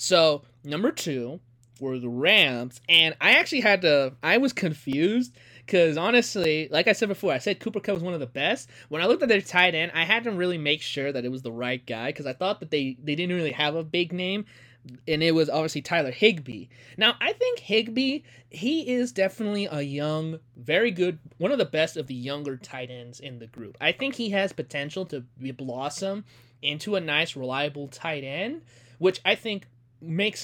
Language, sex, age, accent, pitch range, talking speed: English, male, 20-39, American, 130-200 Hz, 210 wpm